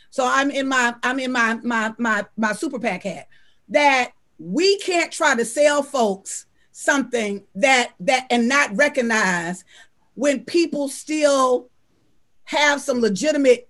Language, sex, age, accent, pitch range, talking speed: English, female, 40-59, American, 240-315 Hz, 140 wpm